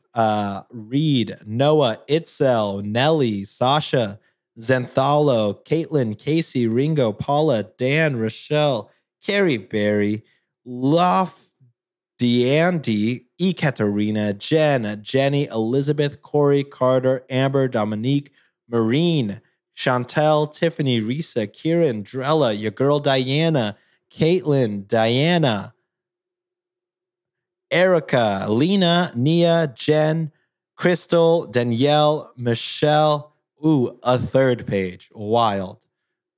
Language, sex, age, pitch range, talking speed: English, male, 30-49, 120-155 Hz, 80 wpm